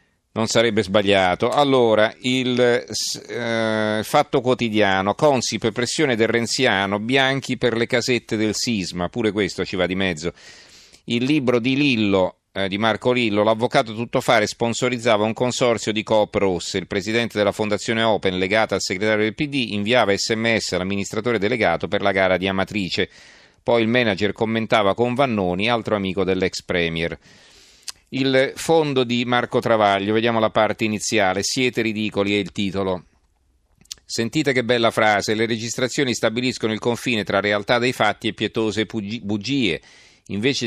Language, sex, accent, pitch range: Italian, male, native, 100-120 Hz